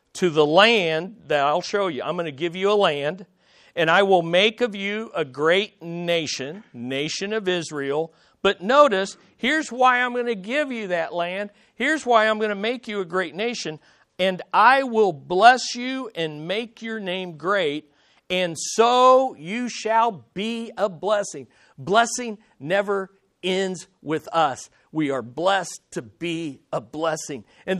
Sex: male